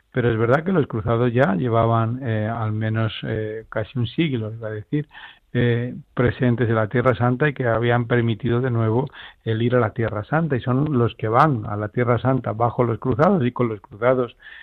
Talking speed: 210 wpm